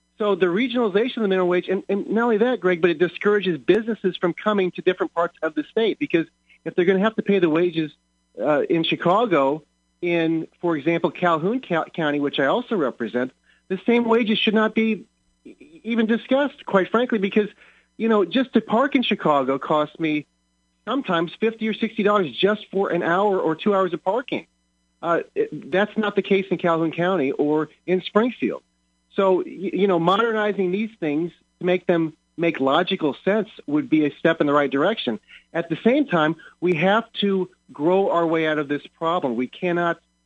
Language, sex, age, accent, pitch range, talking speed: English, male, 40-59, American, 155-205 Hz, 185 wpm